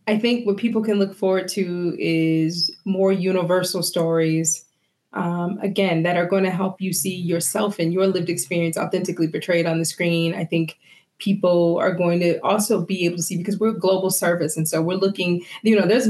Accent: American